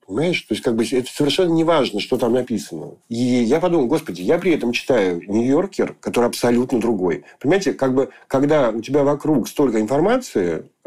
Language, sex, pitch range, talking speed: Russian, male, 110-130 Hz, 190 wpm